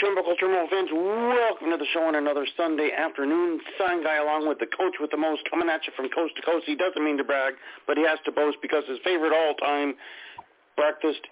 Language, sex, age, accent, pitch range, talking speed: English, male, 50-69, American, 145-180 Hz, 225 wpm